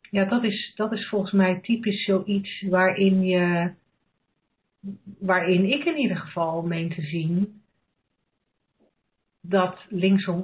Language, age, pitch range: Dutch, 40-59, 175-205 Hz